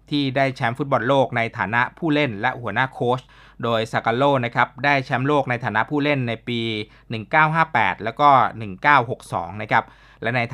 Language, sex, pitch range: Thai, male, 110-145 Hz